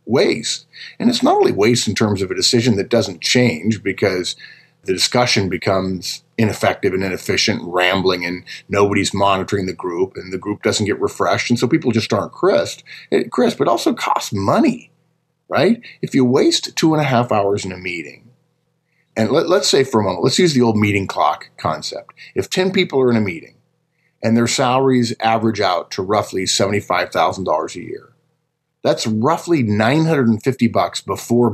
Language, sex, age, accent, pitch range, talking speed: English, male, 50-69, American, 105-150 Hz, 175 wpm